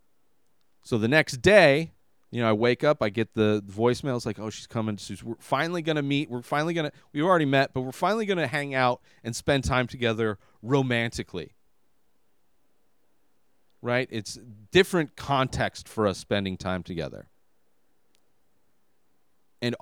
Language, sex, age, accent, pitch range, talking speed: English, male, 40-59, American, 110-145 Hz, 155 wpm